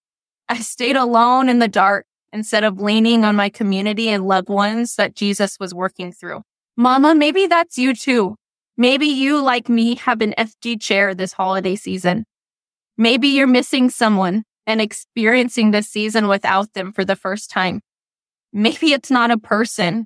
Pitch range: 200-240 Hz